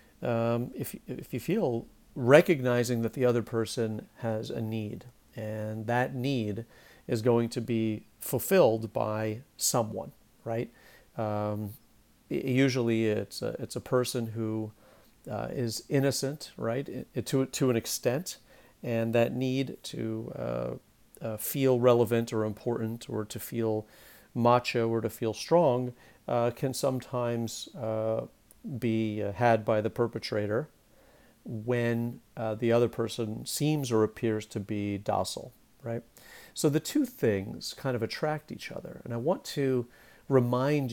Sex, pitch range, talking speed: male, 110-125 Hz, 140 wpm